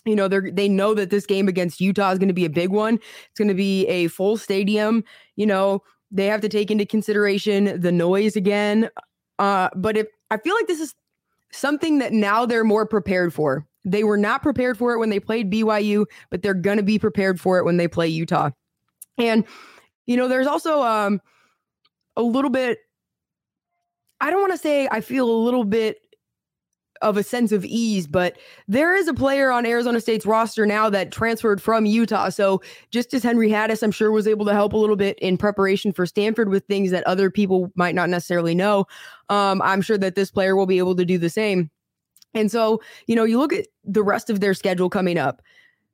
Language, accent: English, American